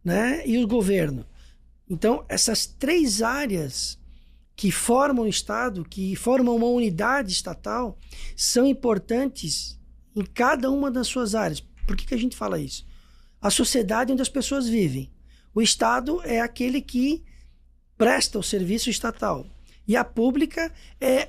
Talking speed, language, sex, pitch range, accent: 145 wpm, Portuguese, male, 195-260 Hz, Brazilian